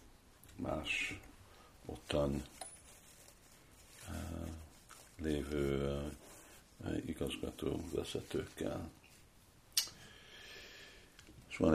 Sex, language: male, Hungarian